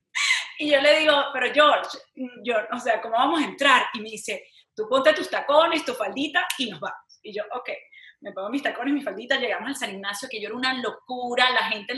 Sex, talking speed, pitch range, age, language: female, 225 wpm, 245-300 Hz, 30-49, English